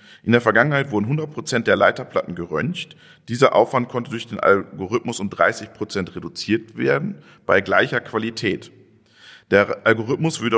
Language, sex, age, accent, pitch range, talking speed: English, male, 40-59, German, 110-140 Hz, 130 wpm